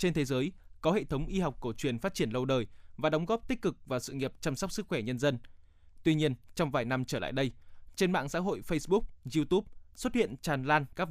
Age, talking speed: 20-39, 255 wpm